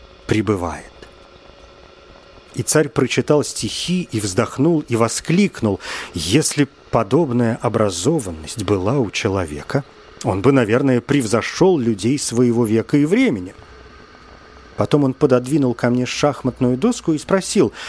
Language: Russian